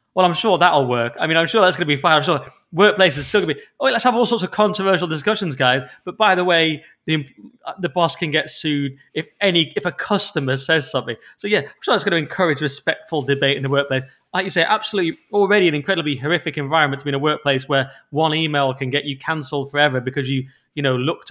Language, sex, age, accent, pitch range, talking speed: English, male, 20-39, British, 140-180 Hz, 250 wpm